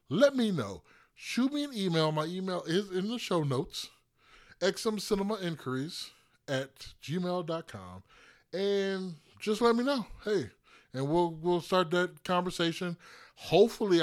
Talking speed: 130 wpm